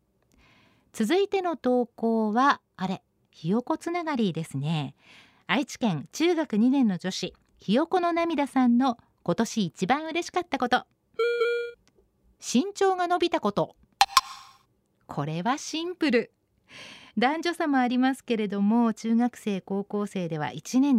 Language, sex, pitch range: Japanese, female, 195-280 Hz